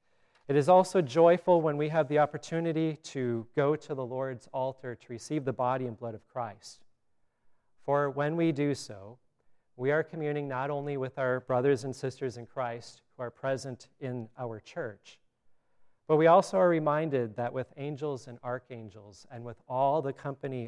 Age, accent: 40-59, American